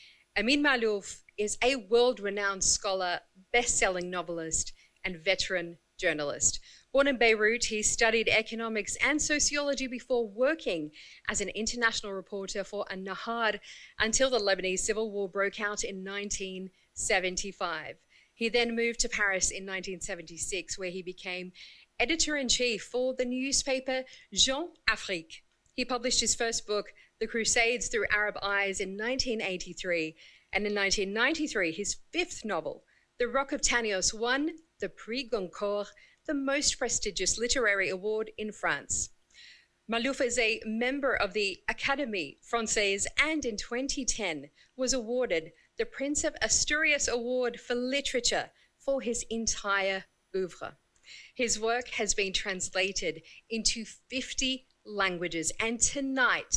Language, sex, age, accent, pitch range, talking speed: English, female, 40-59, Australian, 195-250 Hz, 125 wpm